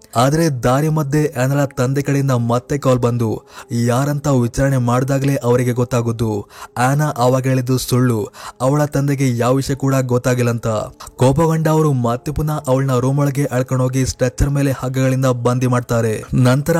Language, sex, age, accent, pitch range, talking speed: Kannada, male, 20-39, native, 125-140 Hz, 130 wpm